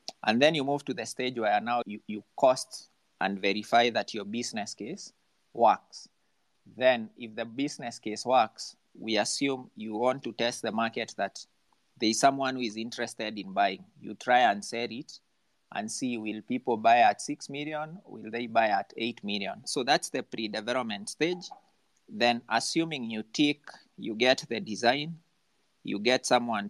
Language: English